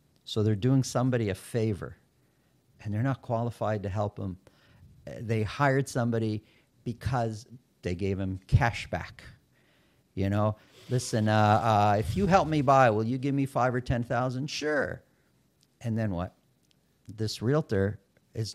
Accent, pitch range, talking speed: American, 105-130 Hz, 150 wpm